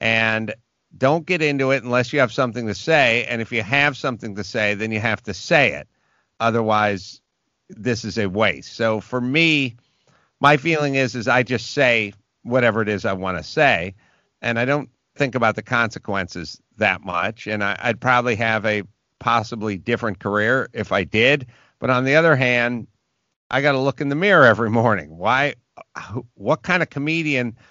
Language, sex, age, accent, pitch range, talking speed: English, male, 50-69, American, 105-140 Hz, 185 wpm